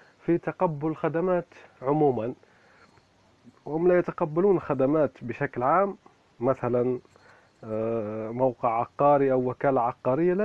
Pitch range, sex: 125-160 Hz, male